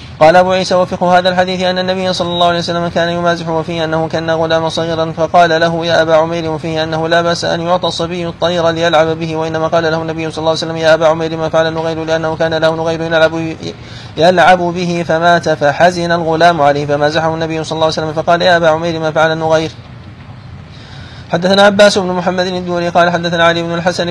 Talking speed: 200 wpm